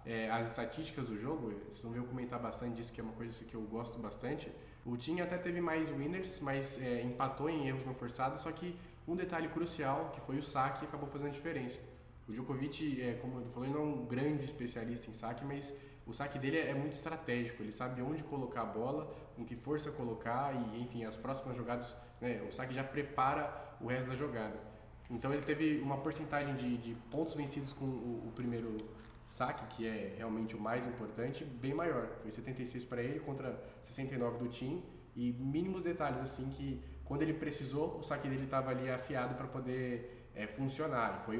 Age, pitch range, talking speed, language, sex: 20-39, 120-145 Hz, 200 wpm, Portuguese, male